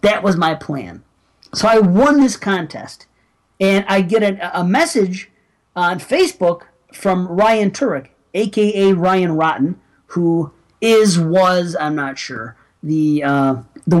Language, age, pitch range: English, 40-59, 160-210 Hz